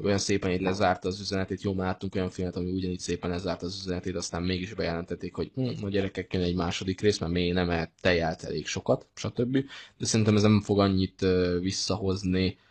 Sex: male